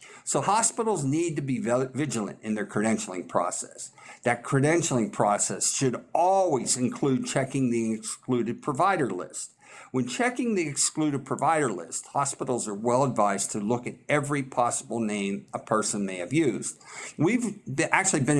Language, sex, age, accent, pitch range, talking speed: English, male, 50-69, American, 115-165 Hz, 145 wpm